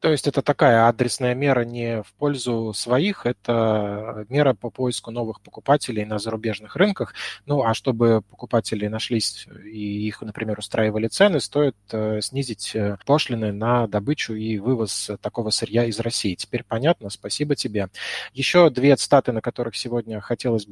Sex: male